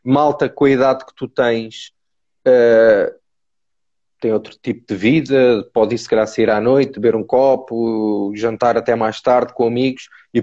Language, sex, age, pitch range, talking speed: Portuguese, male, 20-39, 115-140 Hz, 175 wpm